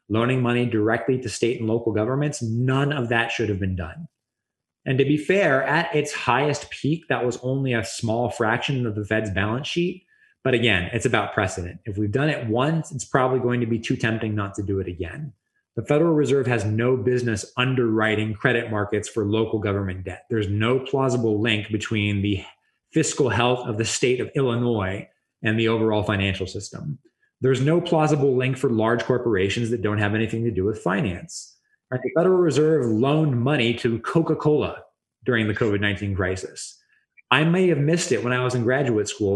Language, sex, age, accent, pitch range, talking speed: English, male, 20-39, American, 105-135 Hz, 190 wpm